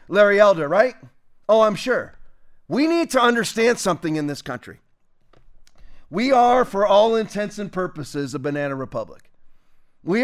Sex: male